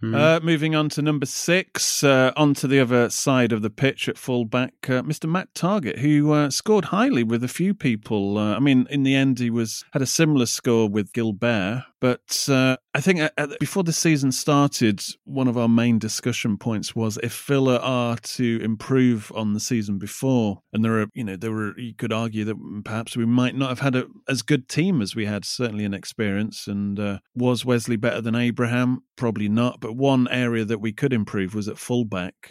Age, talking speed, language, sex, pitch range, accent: 30-49, 205 wpm, English, male, 110-135 Hz, British